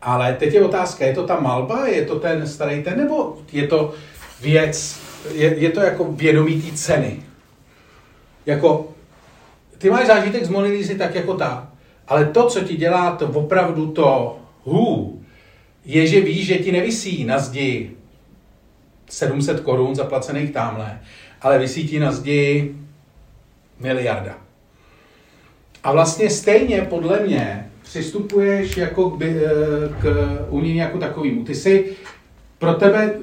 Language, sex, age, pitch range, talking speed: Czech, male, 40-59, 130-195 Hz, 140 wpm